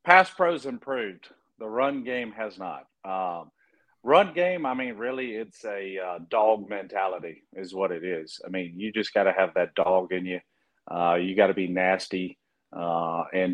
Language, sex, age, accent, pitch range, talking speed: English, male, 40-59, American, 90-115 Hz, 185 wpm